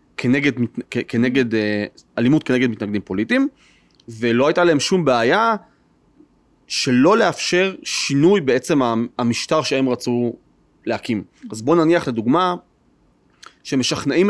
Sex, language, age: male, English, 30-49